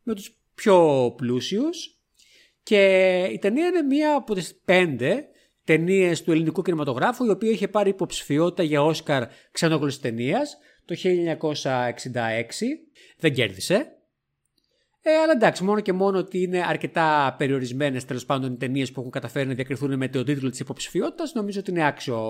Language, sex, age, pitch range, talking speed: Greek, male, 30-49, 130-195 Hz, 155 wpm